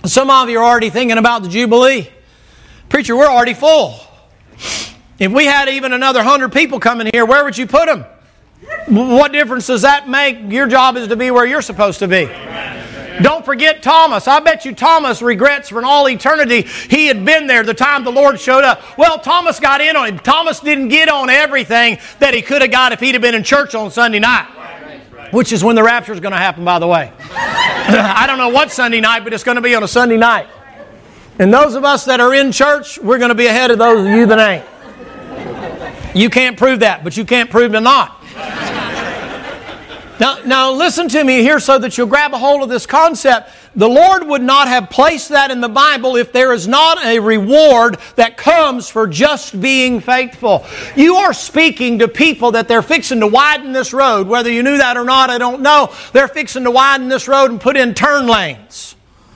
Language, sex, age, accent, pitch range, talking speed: English, male, 40-59, American, 235-285 Hz, 215 wpm